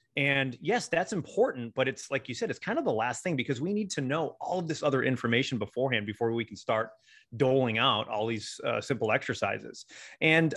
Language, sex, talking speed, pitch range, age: English, male, 215 wpm, 115-160 Hz, 30-49